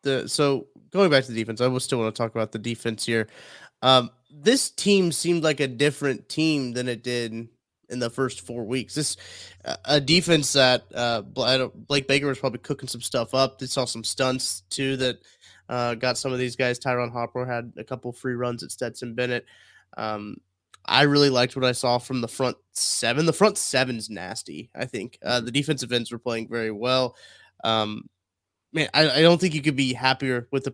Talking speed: 205 wpm